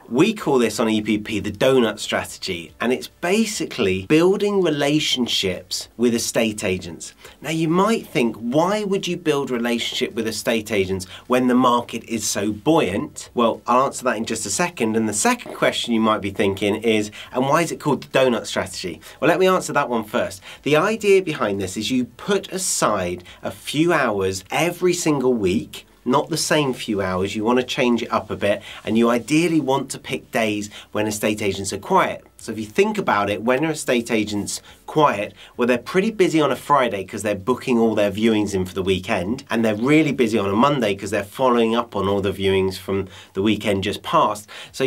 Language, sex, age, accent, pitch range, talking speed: English, male, 30-49, British, 100-135 Hz, 205 wpm